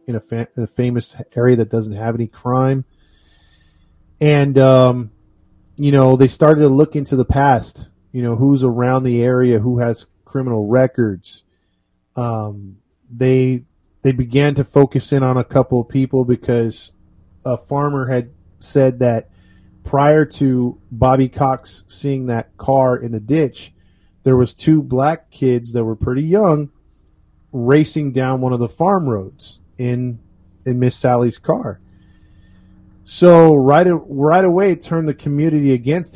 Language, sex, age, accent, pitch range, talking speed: English, male, 30-49, American, 105-135 Hz, 150 wpm